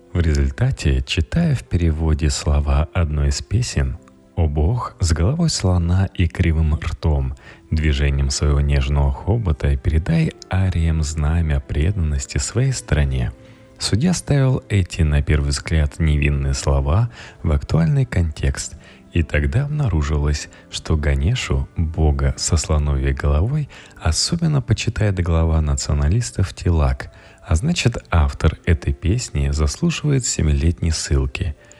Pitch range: 75-100 Hz